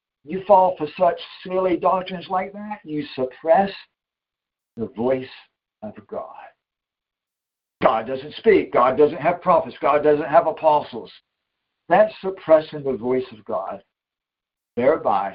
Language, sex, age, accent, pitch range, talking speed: English, male, 60-79, American, 130-180 Hz, 125 wpm